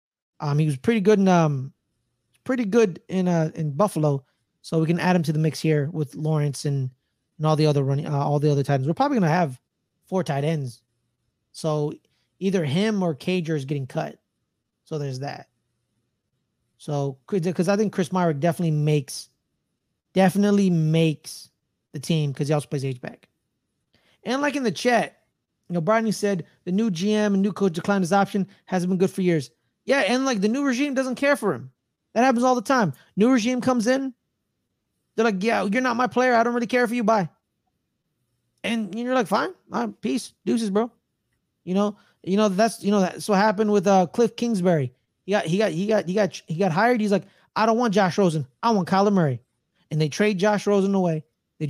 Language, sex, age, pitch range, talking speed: English, male, 20-39, 155-215 Hz, 210 wpm